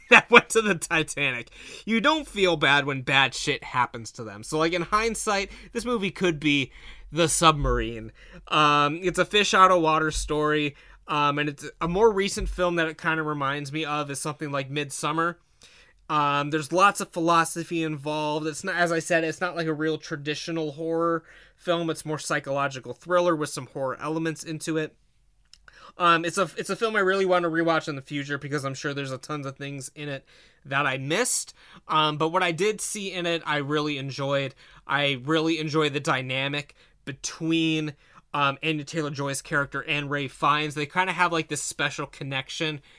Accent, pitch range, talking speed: American, 140-170 Hz, 195 wpm